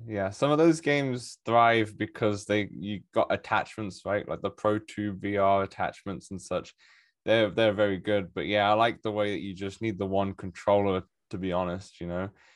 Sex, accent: male, British